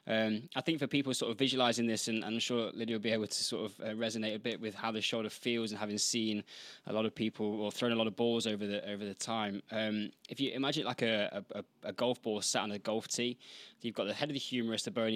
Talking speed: 285 wpm